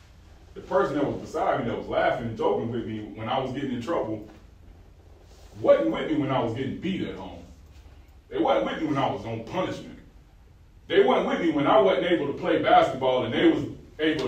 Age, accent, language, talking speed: 30-49, American, English, 225 wpm